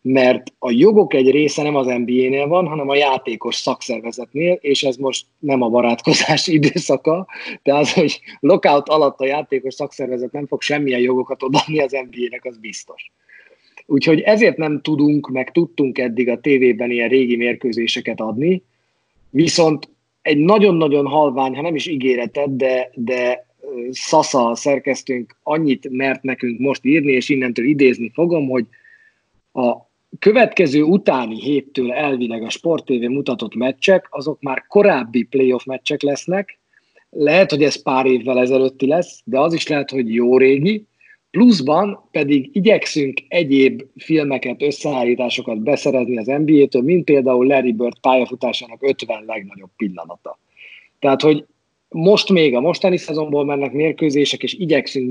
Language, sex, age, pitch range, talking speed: Hungarian, male, 30-49, 125-150 Hz, 140 wpm